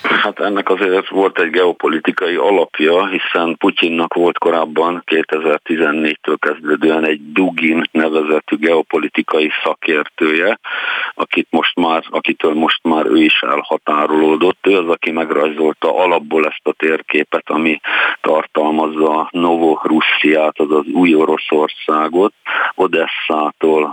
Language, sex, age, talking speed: Hungarian, male, 50-69, 110 wpm